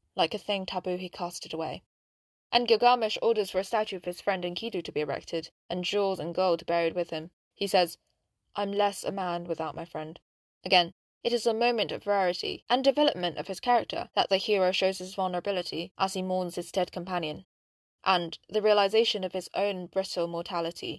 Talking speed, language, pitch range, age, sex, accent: 195 wpm, English, 170-210 Hz, 10-29, female, British